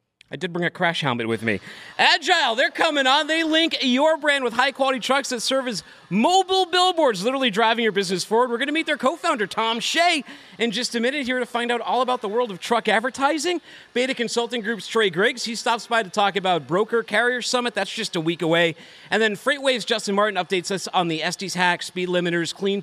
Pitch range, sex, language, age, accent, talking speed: 175-250 Hz, male, English, 40-59, American, 225 wpm